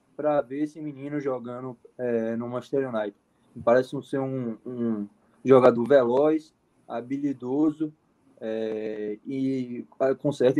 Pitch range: 115-150 Hz